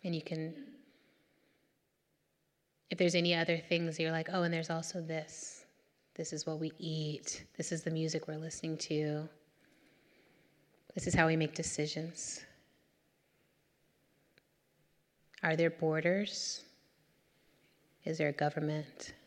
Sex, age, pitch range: female, 30-49, 160-180 Hz